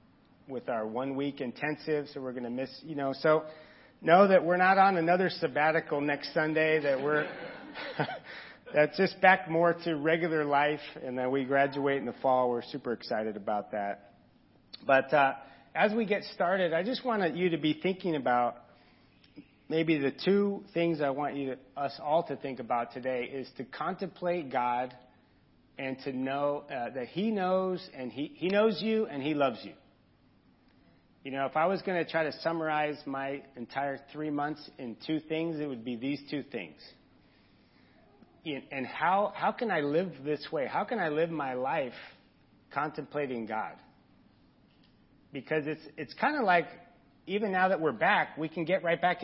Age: 40-59